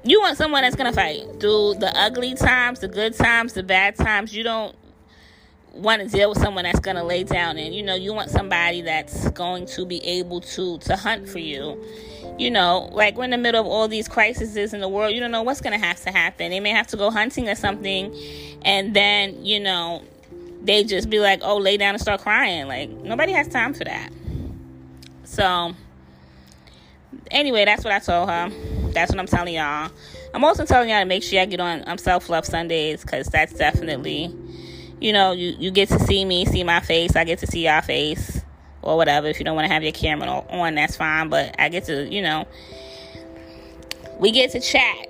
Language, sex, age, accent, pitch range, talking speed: English, female, 20-39, American, 165-210 Hz, 215 wpm